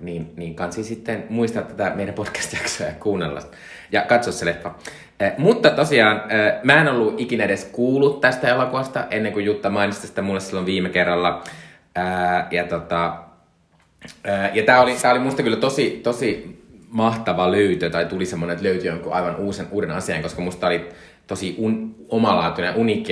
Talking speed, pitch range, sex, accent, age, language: 170 wpm, 85-105 Hz, male, native, 20-39, Finnish